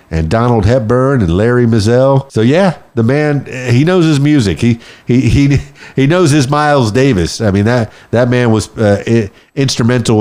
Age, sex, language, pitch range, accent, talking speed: 50-69, male, English, 100-135 Hz, American, 175 wpm